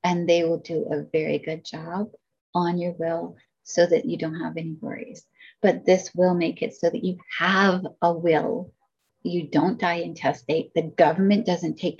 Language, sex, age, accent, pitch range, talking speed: English, female, 30-49, American, 170-265 Hz, 185 wpm